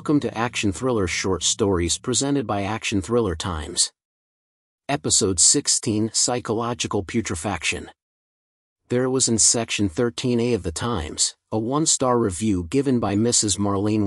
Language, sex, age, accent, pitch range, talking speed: English, male, 40-59, American, 95-125 Hz, 130 wpm